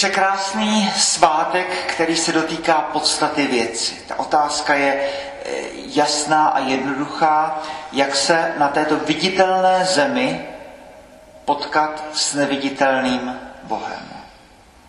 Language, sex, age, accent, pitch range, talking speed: Czech, male, 40-59, native, 130-155 Hz, 95 wpm